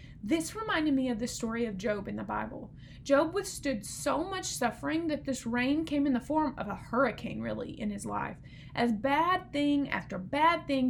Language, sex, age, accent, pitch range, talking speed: English, female, 20-39, American, 230-290 Hz, 200 wpm